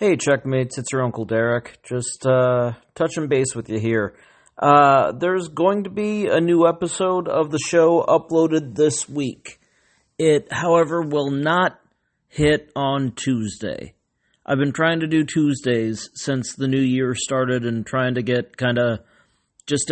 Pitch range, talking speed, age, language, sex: 125-150 Hz, 155 wpm, 40-59, English, male